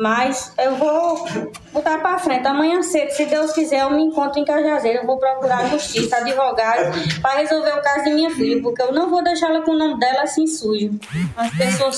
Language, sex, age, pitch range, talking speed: Portuguese, female, 20-39, 245-300 Hz, 210 wpm